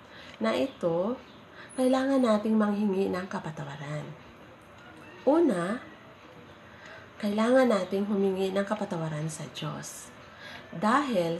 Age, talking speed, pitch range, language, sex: 30-49, 85 wpm, 185-255 Hz, Filipino, female